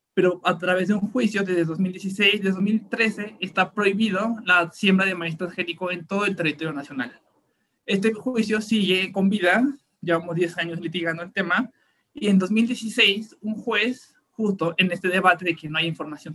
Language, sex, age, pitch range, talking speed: Spanish, male, 20-39, 165-205 Hz, 175 wpm